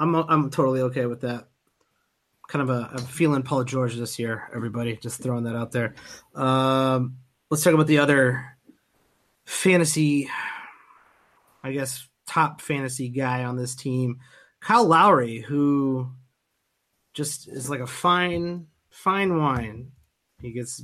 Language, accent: English, American